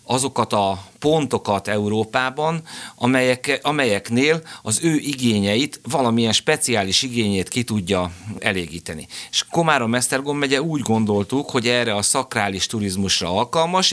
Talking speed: 110 wpm